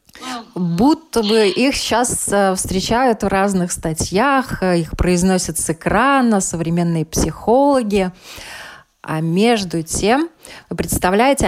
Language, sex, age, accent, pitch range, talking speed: Russian, female, 20-39, native, 175-215 Hz, 100 wpm